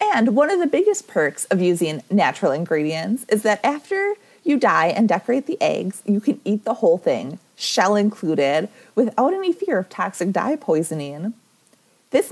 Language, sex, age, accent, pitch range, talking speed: English, female, 30-49, American, 185-255 Hz, 170 wpm